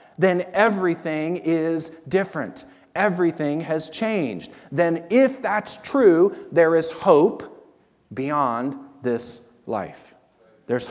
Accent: American